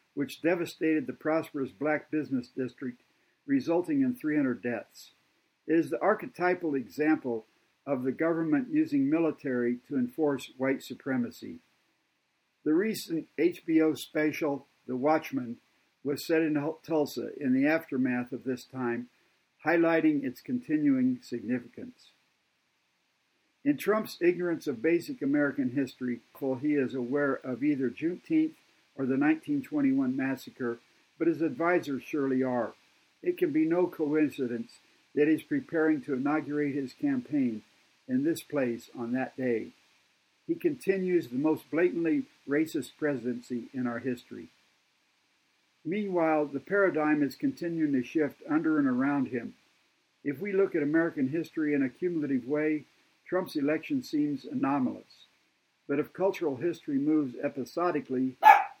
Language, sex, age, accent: English, male, 60-79, American